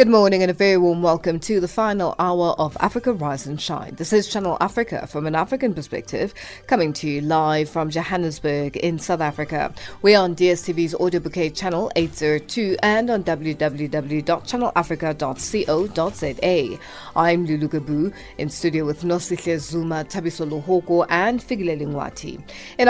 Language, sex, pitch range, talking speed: English, female, 160-205 Hz, 150 wpm